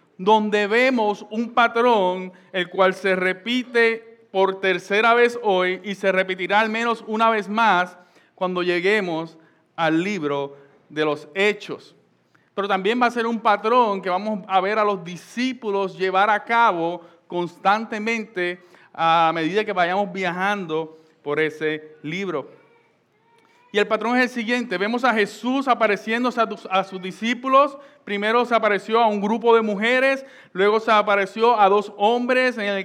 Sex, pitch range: male, 190-235 Hz